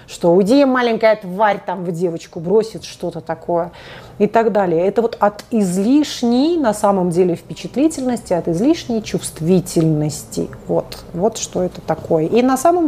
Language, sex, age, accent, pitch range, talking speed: Russian, female, 30-49, native, 170-240 Hz, 150 wpm